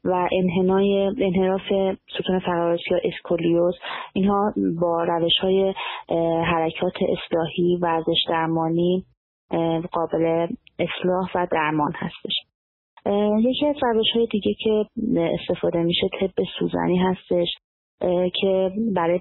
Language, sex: Persian, female